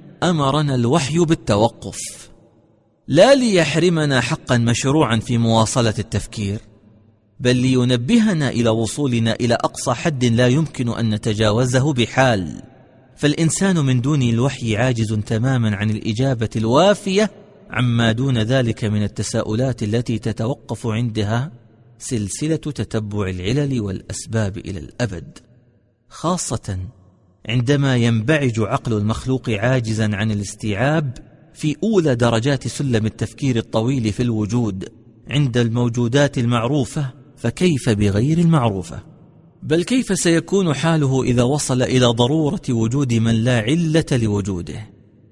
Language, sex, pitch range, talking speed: Arabic, male, 110-145 Hz, 105 wpm